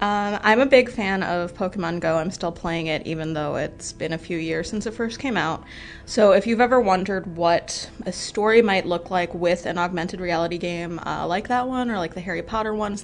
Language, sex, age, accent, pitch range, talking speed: English, female, 20-39, American, 175-210 Hz, 230 wpm